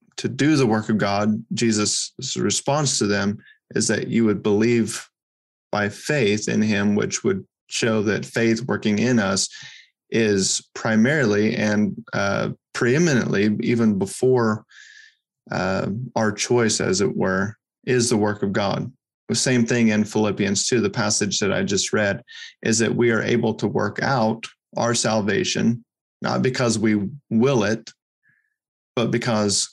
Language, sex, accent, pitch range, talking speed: English, male, American, 105-120 Hz, 150 wpm